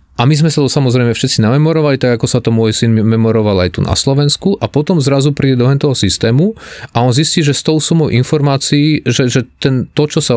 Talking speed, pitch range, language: 225 wpm, 115-145 Hz, Slovak